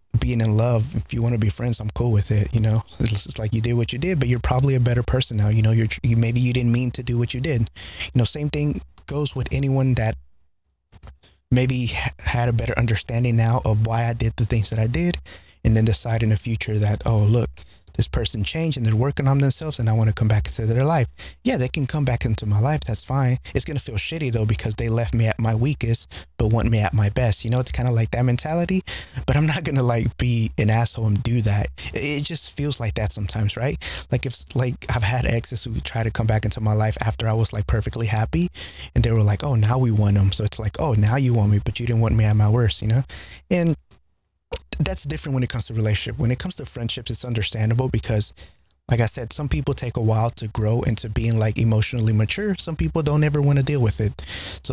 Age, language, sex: 20-39, English, male